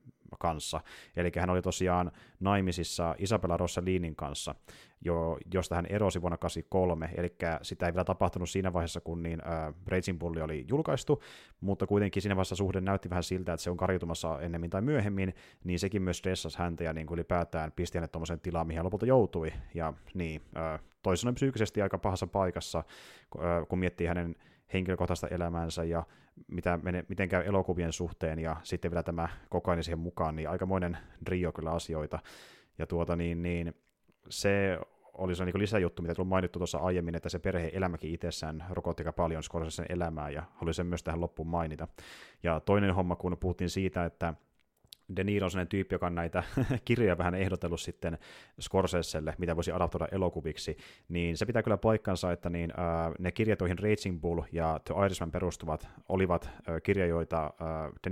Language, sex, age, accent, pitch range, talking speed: Finnish, male, 30-49, native, 85-95 Hz, 175 wpm